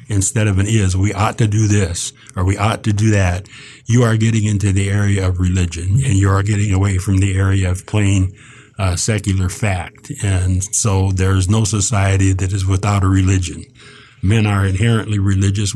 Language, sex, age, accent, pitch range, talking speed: English, male, 50-69, American, 95-115 Hz, 190 wpm